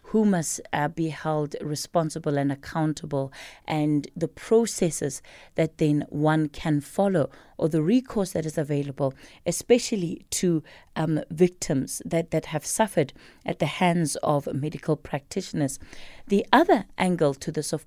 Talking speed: 140 wpm